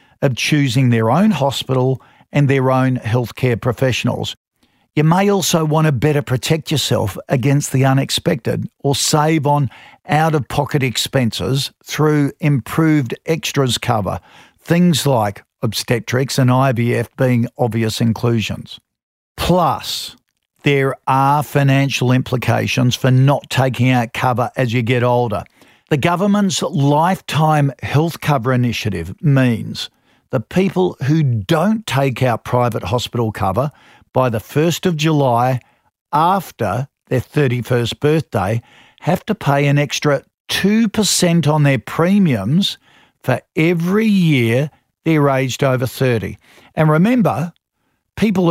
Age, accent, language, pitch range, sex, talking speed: 50-69, Australian, English, 125-155 Hz, male, 120 wpm